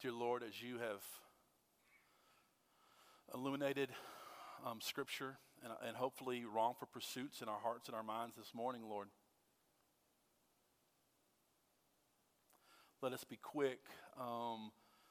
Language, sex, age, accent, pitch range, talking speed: English, male, 50-69, American, 110-135 Hz, 105 wpm